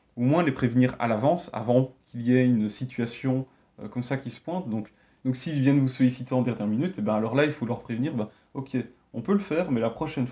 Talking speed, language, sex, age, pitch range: 245 wpm, French, male, 30-49, 115-140 Hz